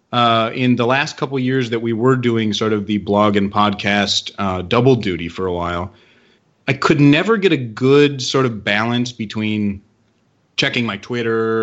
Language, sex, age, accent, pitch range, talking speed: English, male, 30-49, American, 100-120 Hz, 180 wpm